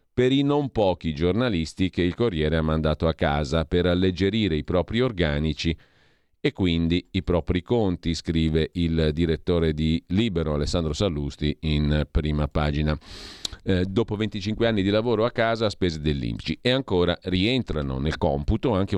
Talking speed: 155 wpm